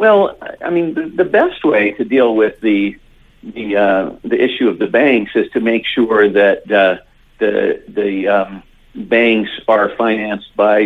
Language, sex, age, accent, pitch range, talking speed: English, male, 50-69, American, 95-115 Hz, 165 wpm